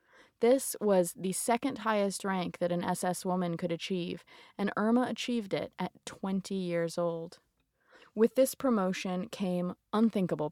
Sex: female